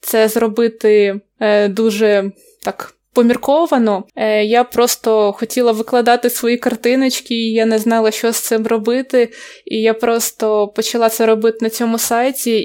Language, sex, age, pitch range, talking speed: Ukrainian, female, 20-39, 210-235 Hz, 140 wpm